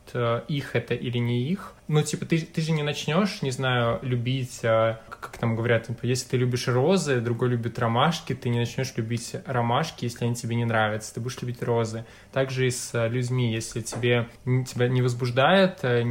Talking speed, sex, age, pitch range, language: 185 wpm, male, 20-39, 115-130 Hz, Russian